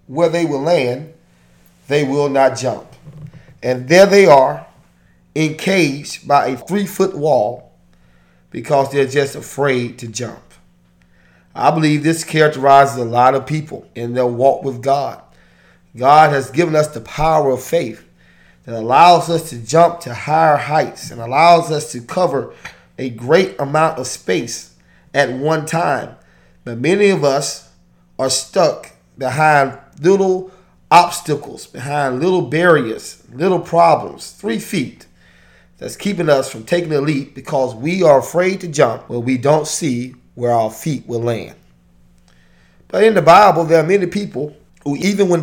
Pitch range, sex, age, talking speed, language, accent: 120-170 Hz, male, 30-49, 150 wpm, English, American